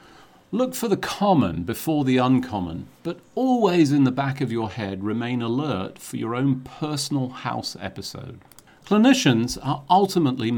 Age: 40-59